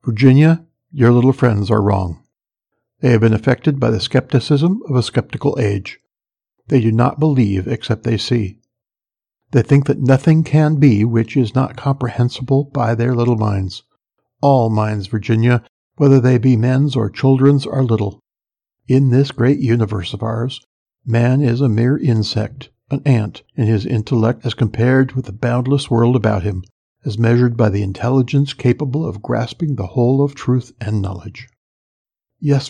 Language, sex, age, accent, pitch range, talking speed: English, male, 60-79, American, 110-135 Hz, 160 wpm